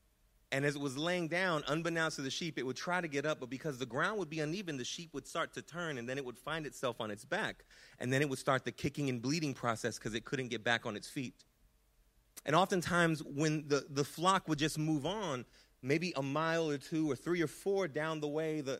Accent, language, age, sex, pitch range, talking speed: American, English, 30-49, male, 125-160 Hz, 250 wpm